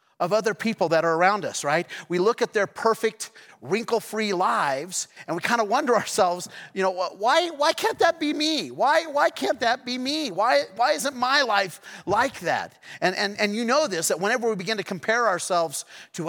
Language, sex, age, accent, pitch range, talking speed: English, male, 40-59, American, 185-235 Hz, 205 wpm